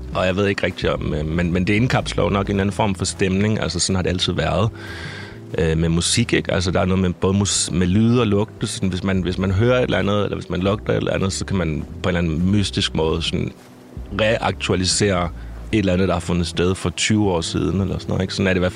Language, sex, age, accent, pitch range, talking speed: Danish, male, 30-49, native, 85-110 Hz, 270 wpm